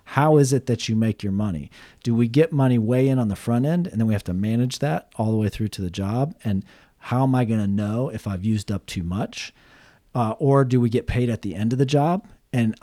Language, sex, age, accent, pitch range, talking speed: English, male, 40-59, American, 105-125 Hz, 270 wpm